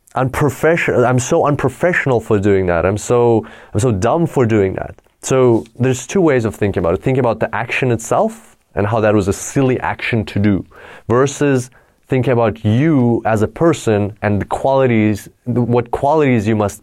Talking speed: 180 wpm